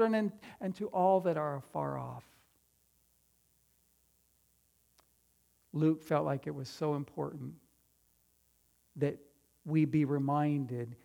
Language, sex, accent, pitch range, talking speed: English, male, American, 130-160 Hz, 105 wpm